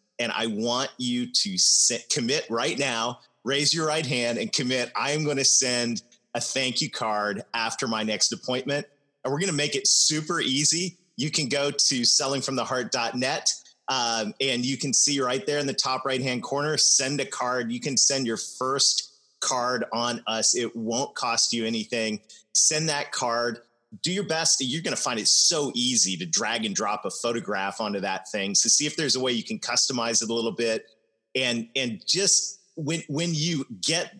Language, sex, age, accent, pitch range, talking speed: English, male, 30-49, American, 115-145 Hz, 195 wpm